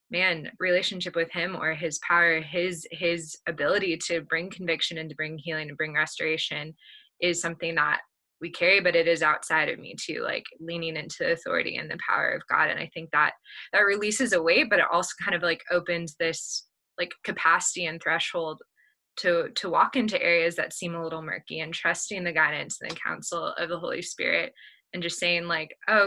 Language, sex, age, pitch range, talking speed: English, female, 20-39, 160-185 Hz, 205 wpm